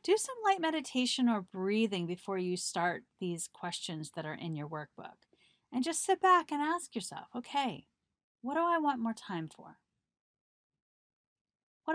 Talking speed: 160 wpm